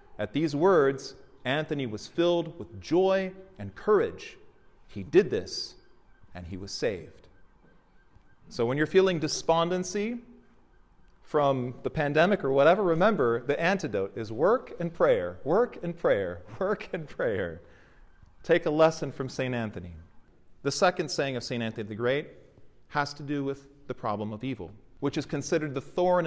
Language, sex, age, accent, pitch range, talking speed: English, male, 40-59, American, 120-165 Hz, 155 wpm